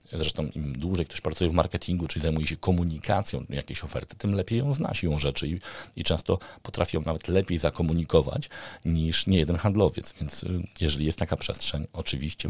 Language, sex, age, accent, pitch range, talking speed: Polish, male, 40-59, native, 75-100 Hz, 180 wpm